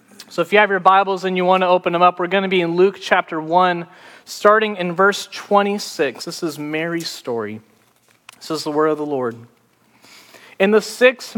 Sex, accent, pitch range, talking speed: male, American, 155-205 Hz, 205 wpm